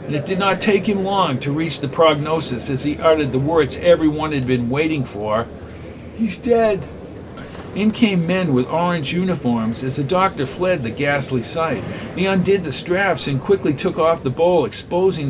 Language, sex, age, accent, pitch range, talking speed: English, male, 50-69, American, 130-170 Hz, 185 wpm